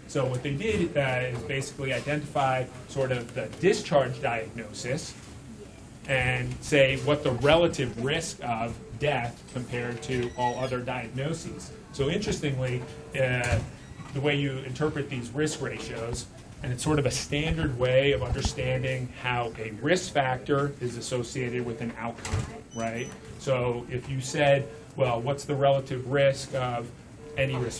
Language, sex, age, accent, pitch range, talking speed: English, male, 30-49, American, 120-140 Hz, 145 wpm